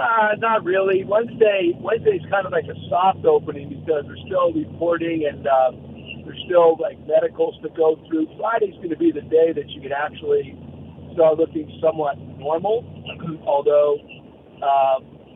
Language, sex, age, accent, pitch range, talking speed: English, male, 50-69, American, 150-215 Hz, 160 wpm